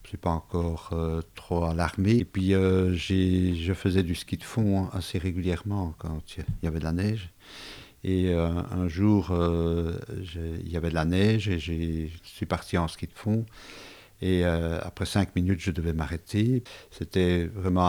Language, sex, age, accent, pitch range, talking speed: French, male, 50-69, French, 85-100 Hz, 180 wpm